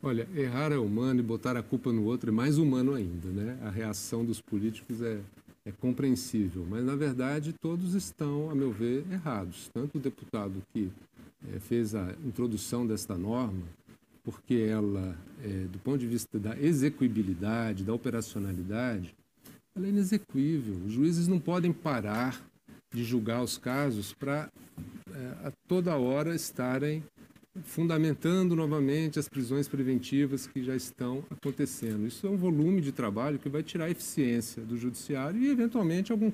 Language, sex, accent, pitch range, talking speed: Portuguese, male, Brazilian, 115-150 Hz, 155 wpm